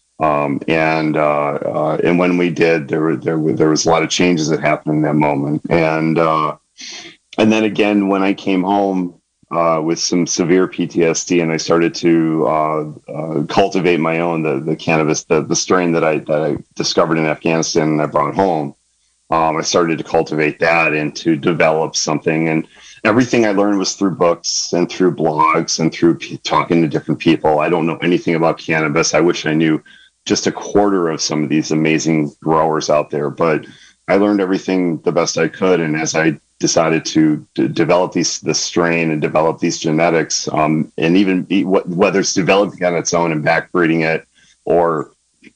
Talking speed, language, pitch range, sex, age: 195 wpm, English, 80-95 Hz, male, 40-59